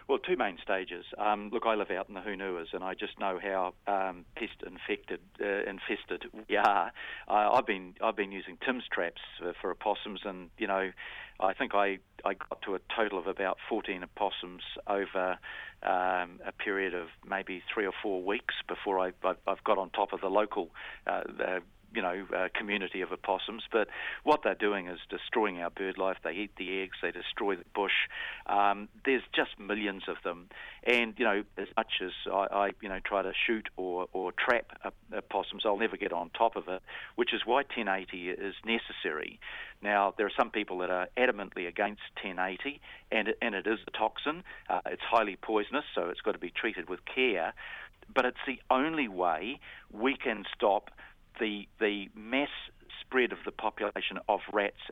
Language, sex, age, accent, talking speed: English, male, 50-69, Australian, 190 wpm